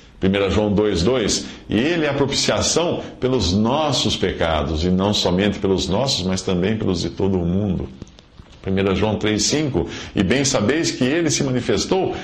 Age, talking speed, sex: 50-69, 160 wpm, male